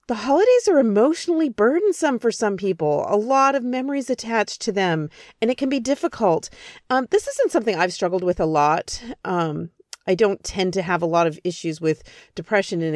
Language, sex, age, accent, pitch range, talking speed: English, female, 40-59, American, 165-230 Hz, 195 wpm